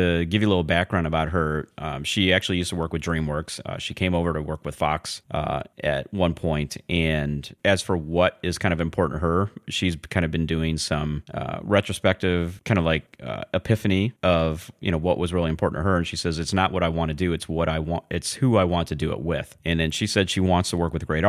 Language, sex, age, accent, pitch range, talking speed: English, male, 30-49, American, 80-95 Hz, 260 wpm